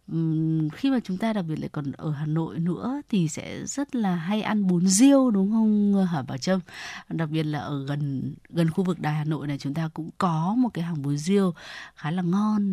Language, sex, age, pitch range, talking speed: Vietnamese, female, 20-39, 160-225 Hz, 230 wpm